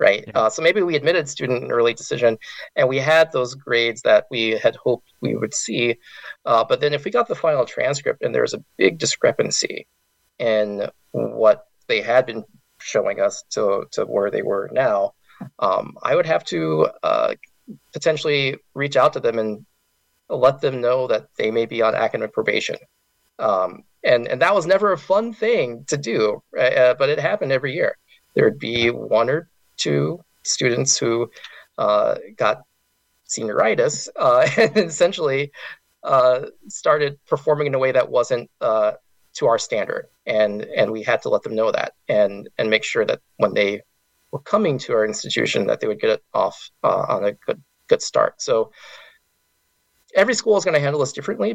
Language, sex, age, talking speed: English, male, 20-39, 185 wpm